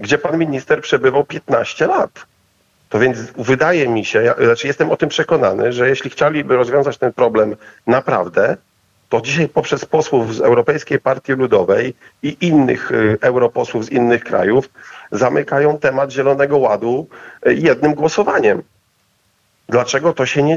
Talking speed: 135 wpm